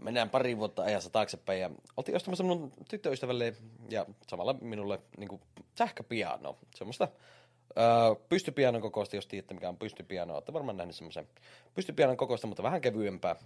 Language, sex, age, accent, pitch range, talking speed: Finnish, male, 30-49, native, 100-125 Hz, 140 wpm